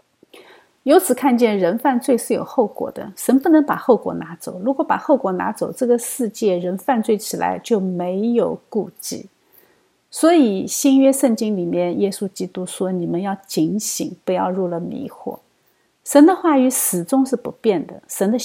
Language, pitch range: Chinese, 185-255 Hz